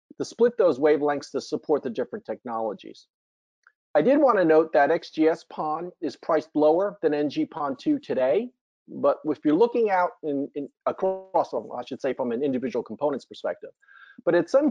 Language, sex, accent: English, male, American